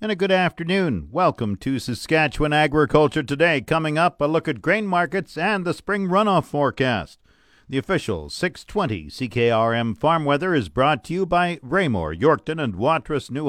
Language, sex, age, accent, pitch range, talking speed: English, male, 50-69, American, 120-165 Hz, 165 wpm